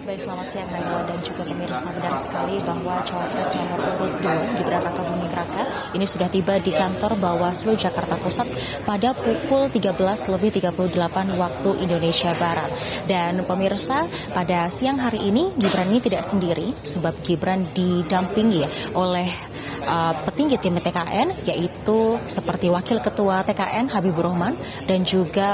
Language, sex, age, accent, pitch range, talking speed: Indonesian, female, 20-39, native, 175-210 Hz, 135 wpm